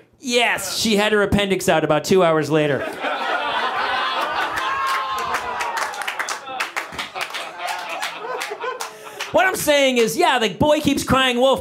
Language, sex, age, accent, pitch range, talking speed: English, male, 30-49, American, 160-270 Hz, 105 wpm